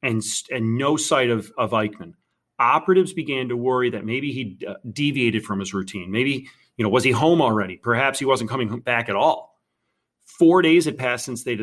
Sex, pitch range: male, 110-140 Hz